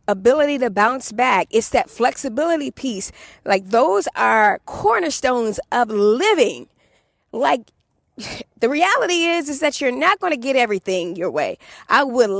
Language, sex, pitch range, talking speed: English, female, 200-280 Hz, 145 wpm